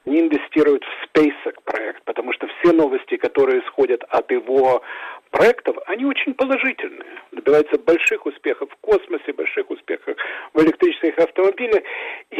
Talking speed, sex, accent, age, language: 135 wpm, male, native, 50-69, Russian